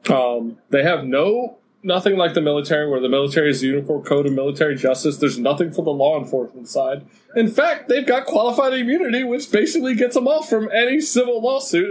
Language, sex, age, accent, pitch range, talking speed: English, male, 20-39, American, 125-165 Hz, 200 wpm